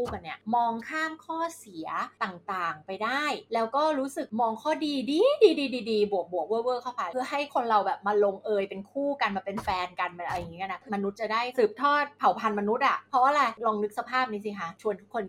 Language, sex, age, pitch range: Thai, female, 20-39, 205-295 Hz